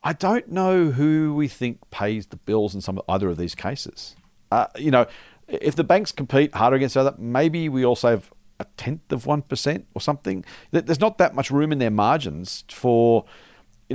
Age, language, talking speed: 50-69, English, 200 wpm